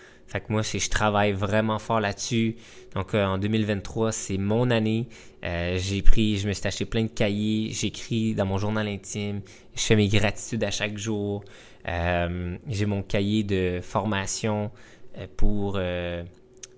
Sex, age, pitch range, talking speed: male, 20-39, 95-115 Hz, 165 wpm